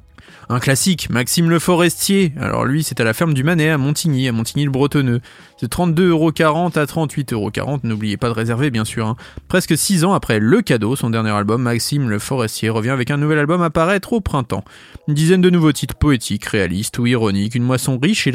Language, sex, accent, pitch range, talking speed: French, male, French, 115-160 Hz, 205 wpm